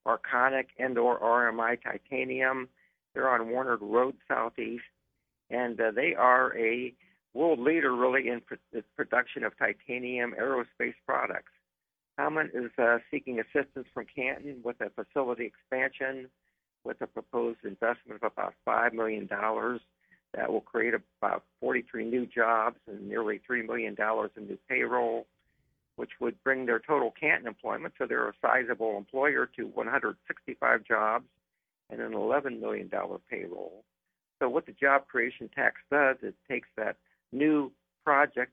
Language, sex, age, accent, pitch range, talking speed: English, male, 50-69, American, 115-130 Hz, 140 wpm